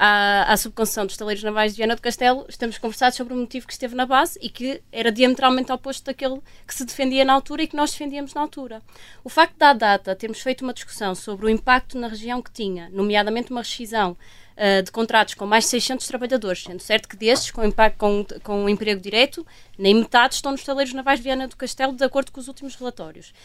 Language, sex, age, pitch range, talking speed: Portuguese, female, 20-39, 210-265 Hz, 215 wpm